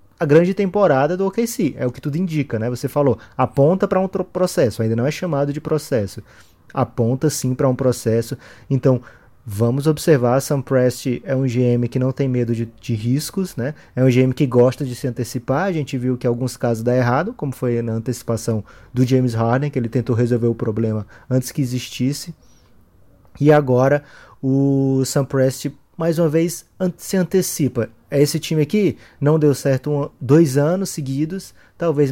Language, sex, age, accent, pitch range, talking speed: Portuguese, male, 20-39, Brazilian, 120-150 Hz, 185 wpm